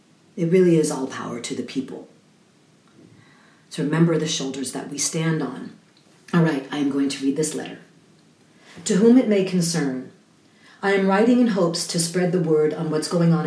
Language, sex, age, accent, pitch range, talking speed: English, female, 40-59, American, 150-185 Hz, 190 wpm